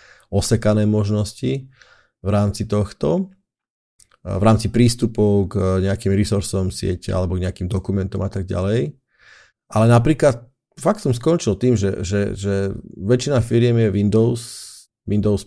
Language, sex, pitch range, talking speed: Slovak, male, 100-115 Hz, 130 wpm